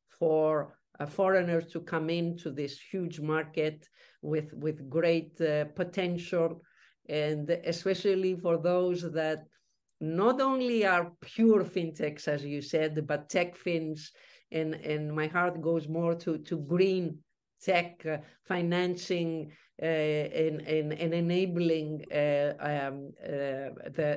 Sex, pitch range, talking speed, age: female, 150-175 Hz, 125 wpm, 50-69